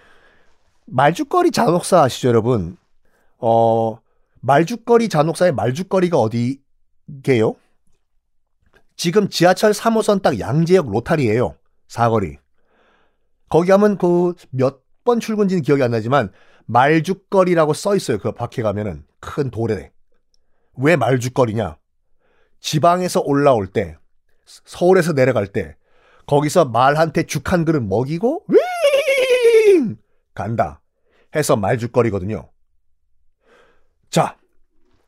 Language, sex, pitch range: Korean, male, 120-190 Hz